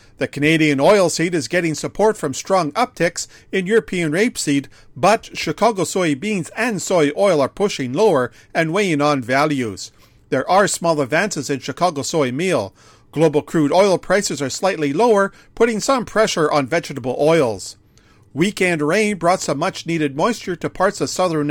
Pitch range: 140-185 Hz